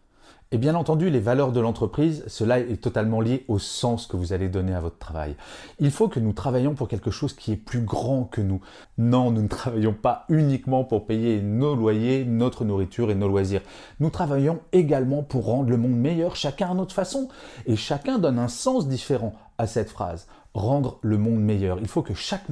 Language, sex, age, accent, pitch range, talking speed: French, male, 30-49, French, 110-150 Hz, 210 wpm